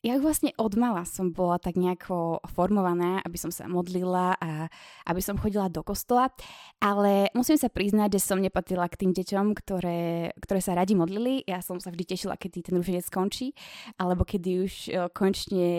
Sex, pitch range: female, 190-235 Hz